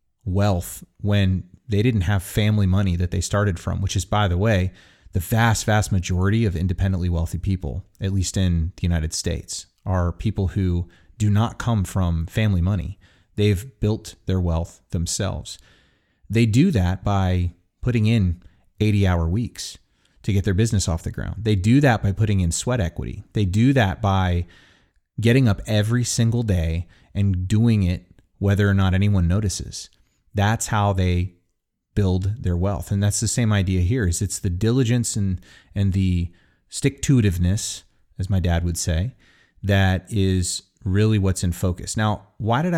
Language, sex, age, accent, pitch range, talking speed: English, male, 30-49, American, 90-110 Hz, 165 wpm